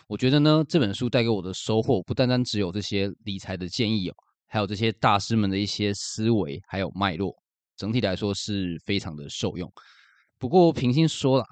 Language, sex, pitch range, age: Chinese, male, 95-115 Hz, 20-39